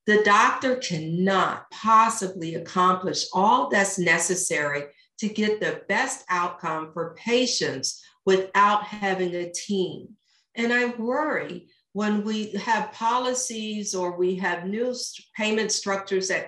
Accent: American